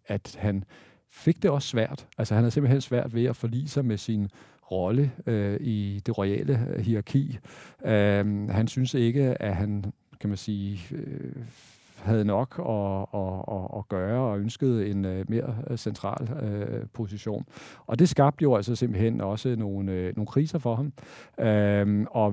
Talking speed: 135 wpm